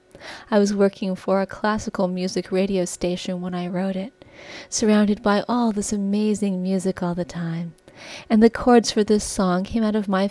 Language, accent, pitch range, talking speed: English, American, 185-210 Hz, 185 wpm